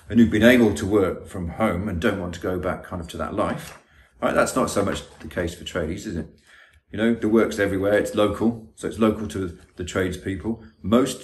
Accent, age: British, 40-59